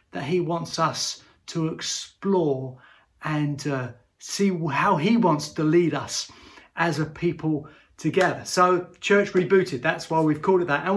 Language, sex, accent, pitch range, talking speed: English, male, British, 155-200 Hz, 160 wpm